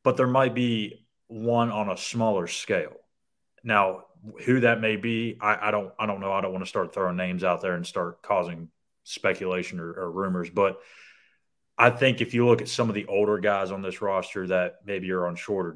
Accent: American